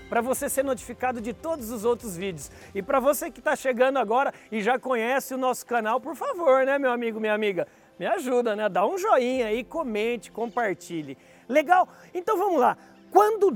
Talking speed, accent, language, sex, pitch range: 190 wpm, Brazilian, Portuguese, male, 210-285 Hz